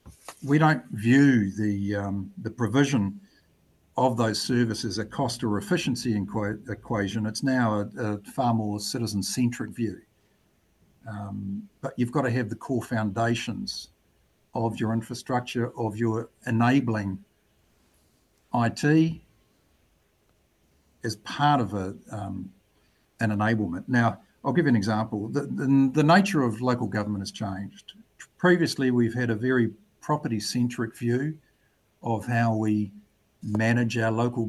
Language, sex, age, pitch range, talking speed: English, male, 60-79, 105-125 Hz, 130 wpm